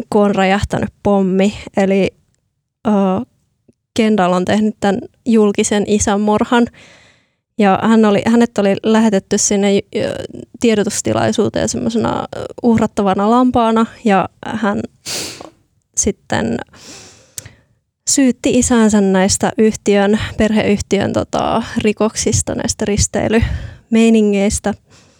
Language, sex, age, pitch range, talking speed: Finnish, female, 20-39, 200-230 Hz, 85 wpm